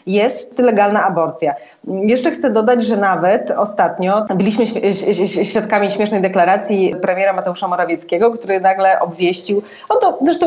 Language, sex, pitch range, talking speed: Polish, female, 180-235 Hz, 125 wpm